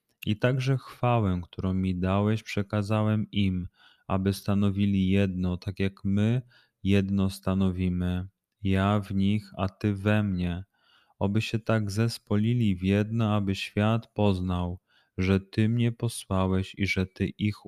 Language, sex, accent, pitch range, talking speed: Polish, male, native, 95-105 Hz, 135 wpm